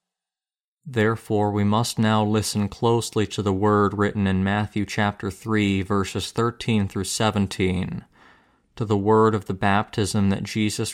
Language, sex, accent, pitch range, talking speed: English, male, American, 95-110 Hz, 145 wpm